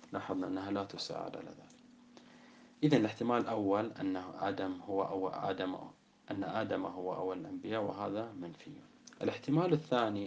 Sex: male